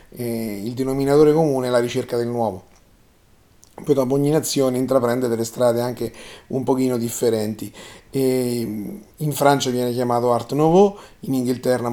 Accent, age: native, 30-49